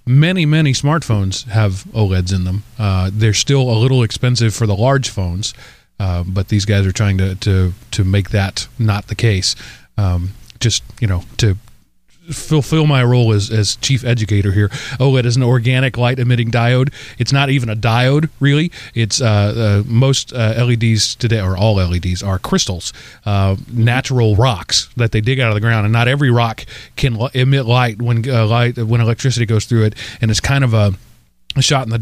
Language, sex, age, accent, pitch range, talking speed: English, male, 30-49, American, 105-125 Hz, 190 wpm